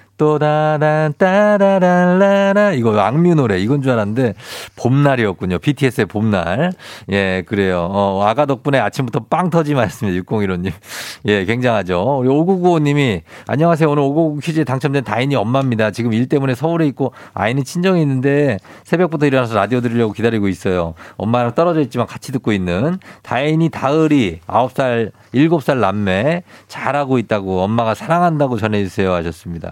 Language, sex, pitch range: Korean, male, 110-155 Hz